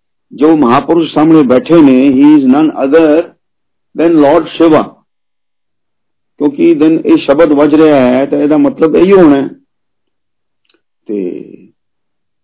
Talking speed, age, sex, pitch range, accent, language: 90 wpm, 50-69, male, 135-195 Hz, native, Hindi